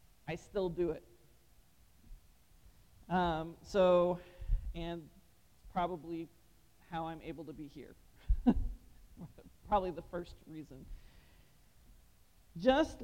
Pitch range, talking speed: 160-210 Hz, 85 wpm